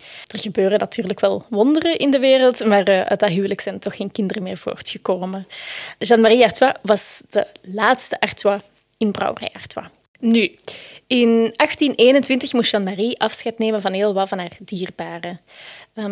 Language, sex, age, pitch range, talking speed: Dutch, female, 20-39, 195-245 Hz, 155 wpm